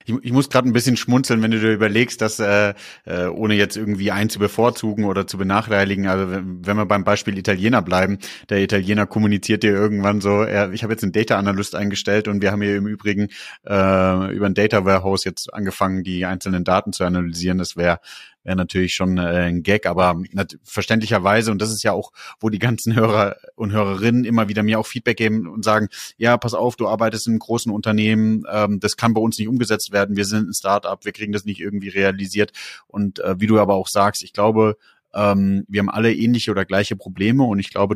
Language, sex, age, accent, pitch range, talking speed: German, male, 30-49, German, 95-110 Hz, 210 wpm